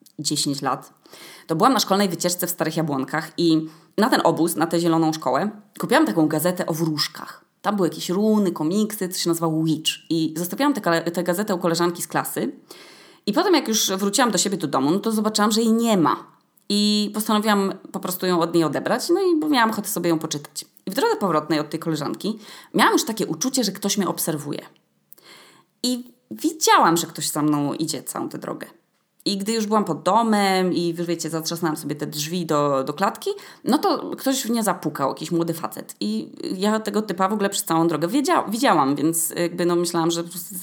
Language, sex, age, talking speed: Polish, female, 20-39, 205 wpm